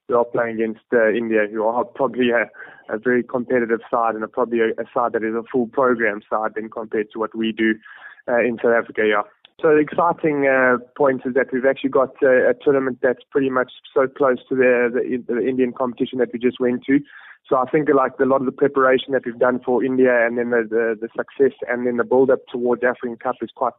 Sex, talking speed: male, 240 wpm